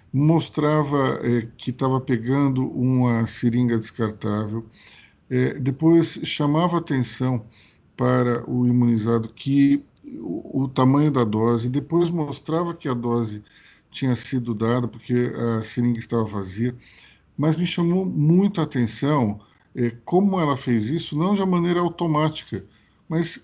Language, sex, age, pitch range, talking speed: Portuguese, male, 50-69, 115-165 Hz, 130 wpm